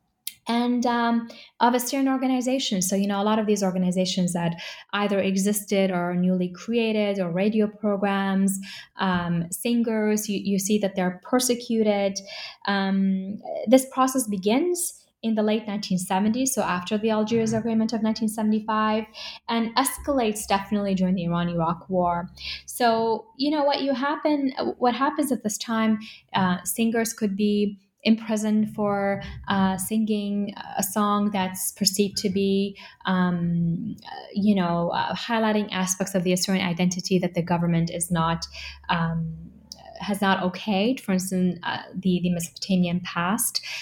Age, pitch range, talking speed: 10-29, 185-220 Hz, 140 wpm